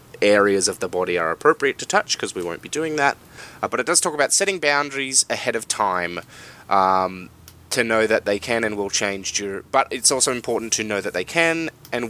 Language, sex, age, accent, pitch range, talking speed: English, male, 20-39, Australian, 100-135 Hz, 220 wpm